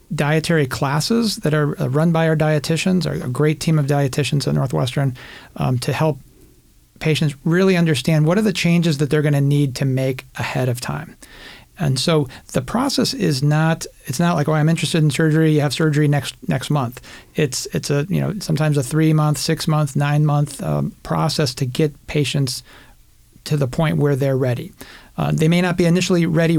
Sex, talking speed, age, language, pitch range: male, 195 wpm, 40-59, English, 140-165 Hz